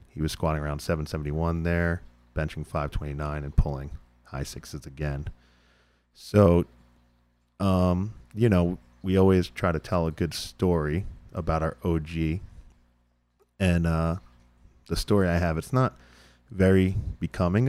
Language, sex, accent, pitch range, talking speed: English, male, American, 70-90 Hz, 130 wpm